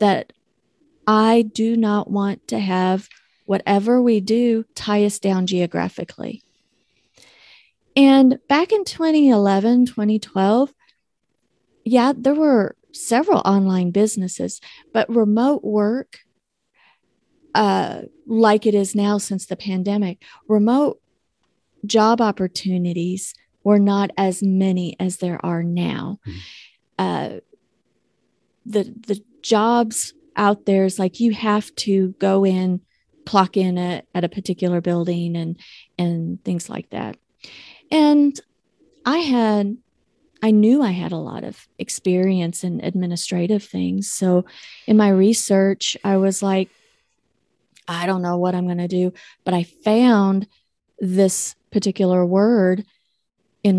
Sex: female